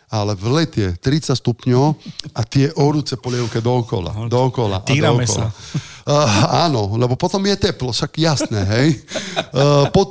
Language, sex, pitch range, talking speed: Slovak, male, 120-155 Hz, 130 wpm